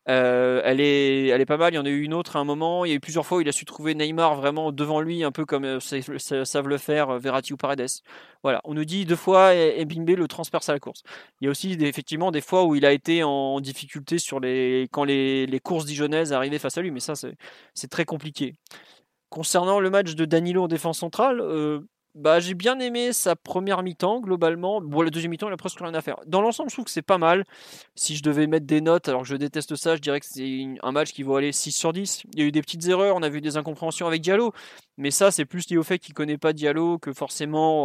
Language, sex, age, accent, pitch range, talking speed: French, male, 20-39, French, 145-180 Hz, 270 wpm